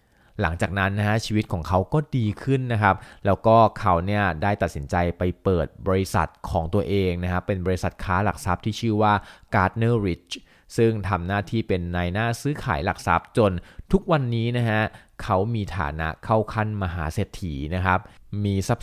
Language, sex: Thai, male